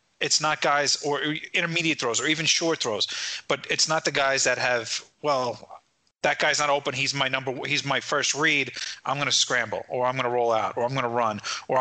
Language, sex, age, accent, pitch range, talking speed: English, male, 30-49, American, 125-150 Hz, 230 wpm